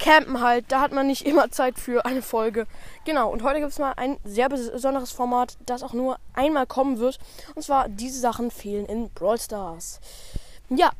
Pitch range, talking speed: 240-290 Hz, 195 wpm